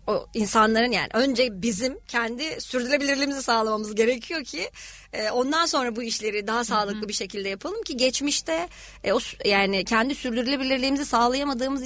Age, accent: 30-49, native